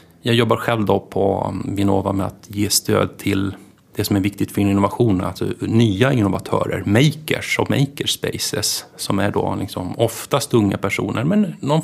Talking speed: 160 wpm